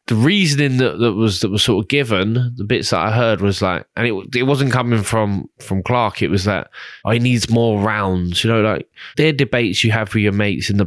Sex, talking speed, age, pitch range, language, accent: male, 250 wpm, 20-39, 100-125 Hz, English, British